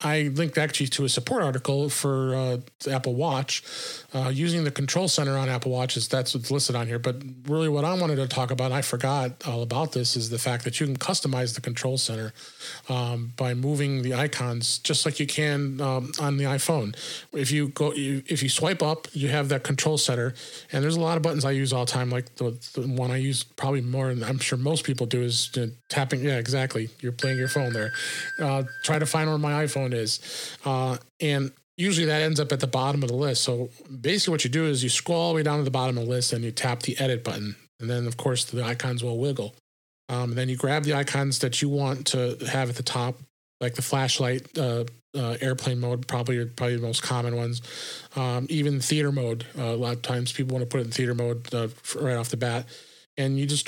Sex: male